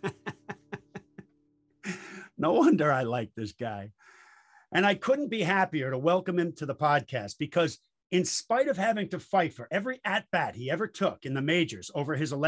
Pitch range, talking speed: 145-195 Hz, 170 wpm